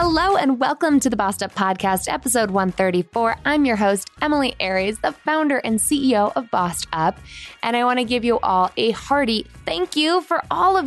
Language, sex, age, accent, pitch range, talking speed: English, female, 20-39, American, 175-240 Hz, 200 wpm